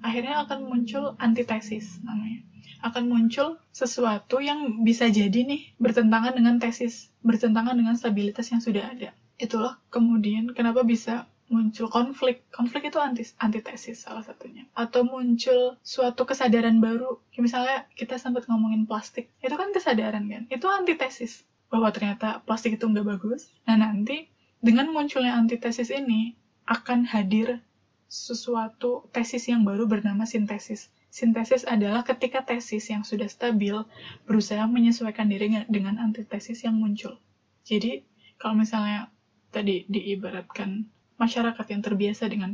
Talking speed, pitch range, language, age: 130 wpm, 215-245 Hz, Indonesian, 10-29